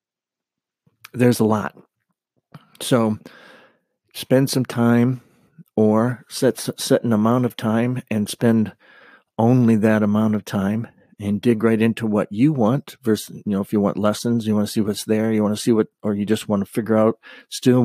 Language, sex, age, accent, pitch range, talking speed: English, male, 50-69, American, 105-115 Hz, 180 wpm